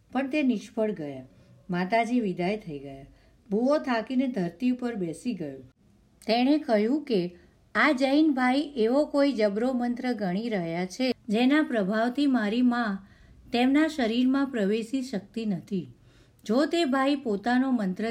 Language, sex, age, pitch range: Gujarati, female, 50-69, 200-265 Hz